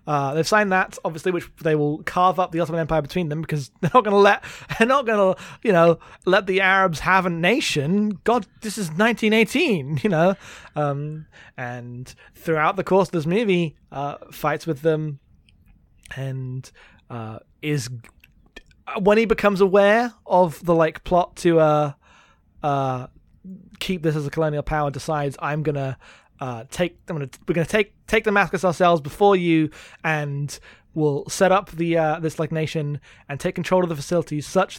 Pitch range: 140-180 Hz